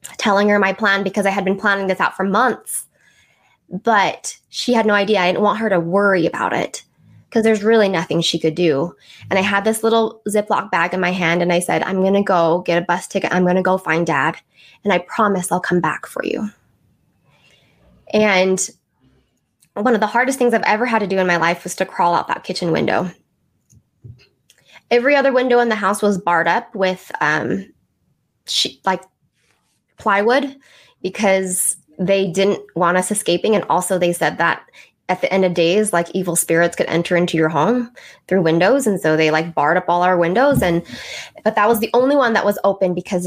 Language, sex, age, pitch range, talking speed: English, female, 10-29, 175-210 Hz, 205 wpm